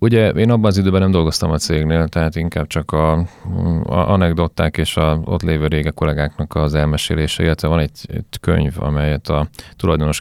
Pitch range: 75-85 Hz